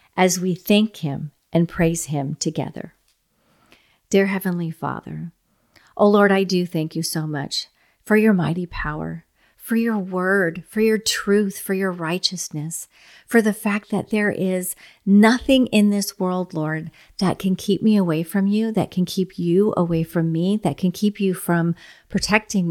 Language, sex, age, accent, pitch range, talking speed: English, female, 40-59, American, 170-210 Hz, 165 wpm